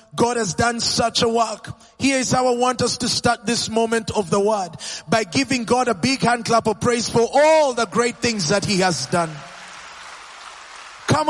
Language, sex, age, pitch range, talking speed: English, male, 30-49, 155-250 Hz, 200 wpm